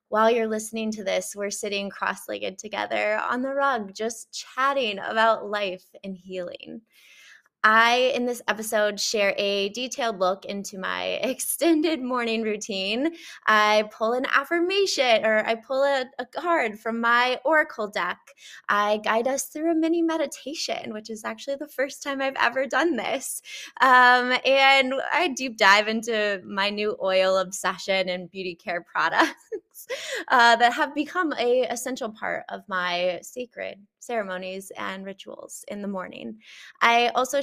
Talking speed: 150 wpm